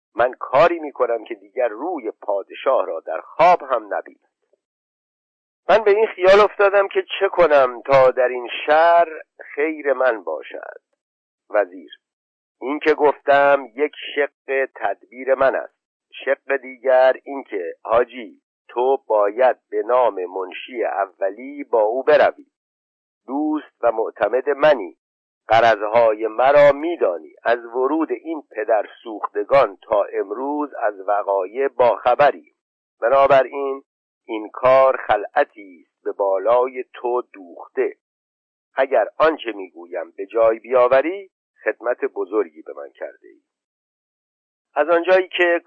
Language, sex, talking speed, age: Persian, male, 120 wpm, 50-69